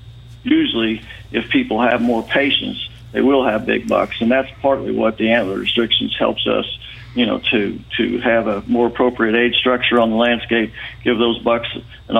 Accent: American